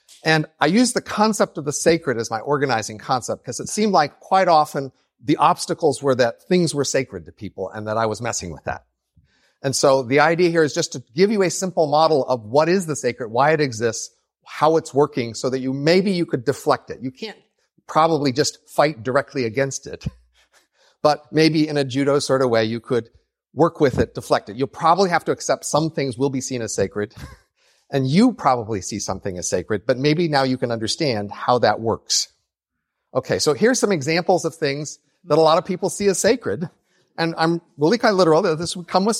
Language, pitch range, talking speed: English, 130-190 Hz, 220 wpm